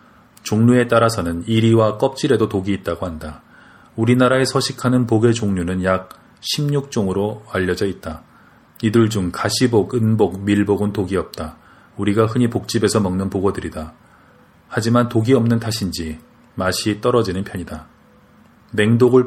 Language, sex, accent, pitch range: Korean, male, native, 95-115 Hz